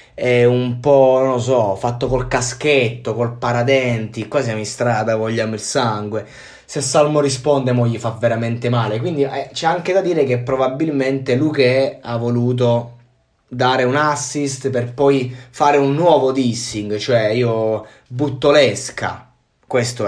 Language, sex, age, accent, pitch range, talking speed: Italian, male, 20-39, native, 120-140 Hz, 150 wpm